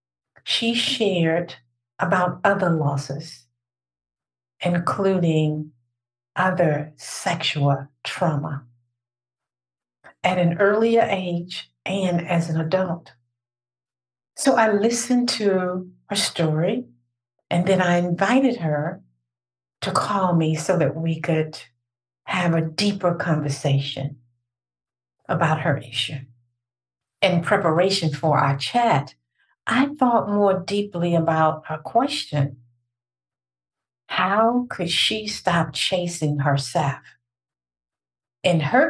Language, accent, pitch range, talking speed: English, American, 125-185 Hz, 95 wpm